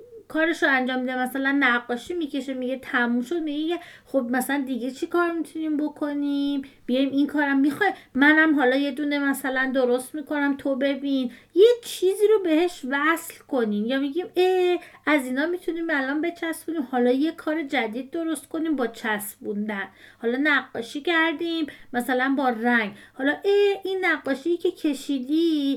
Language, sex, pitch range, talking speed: Persian, female, 265-335 Hz, 150 wpm